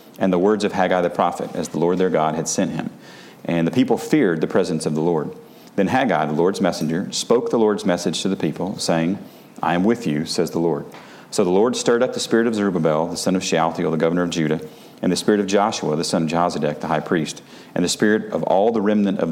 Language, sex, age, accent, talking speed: English, male, 40-59, American, 250 wpm